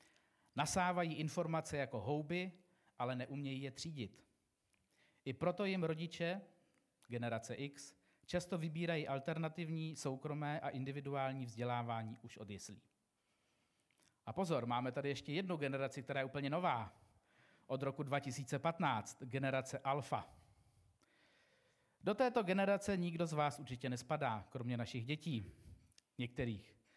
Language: Czech